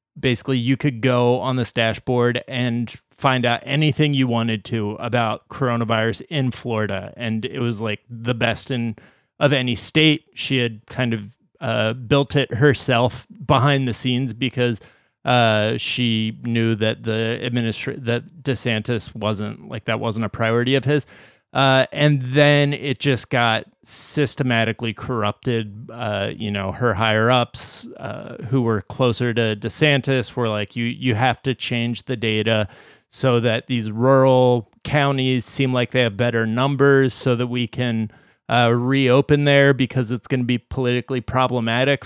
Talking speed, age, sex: 155 wpm, 30-49, male